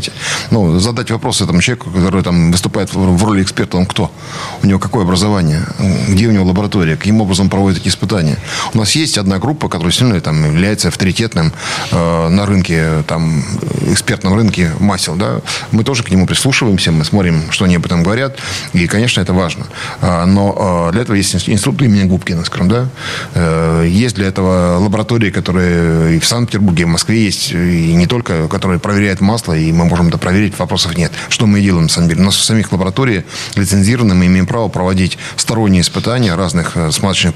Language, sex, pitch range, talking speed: Russian, male, 90-115 Hz, 180 wpm